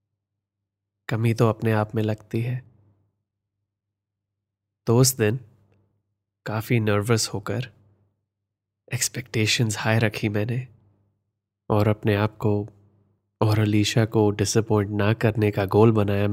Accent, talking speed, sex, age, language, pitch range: native, 110 wpm, male, 20-39, Hindi, 100-110 Hz